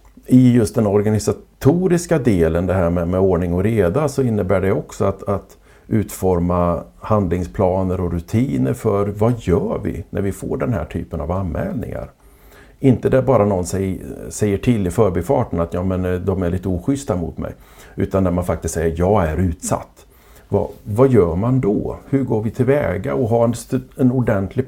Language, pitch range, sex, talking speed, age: Swedish, 85-120 Hz, male, 175 wpm, 50-69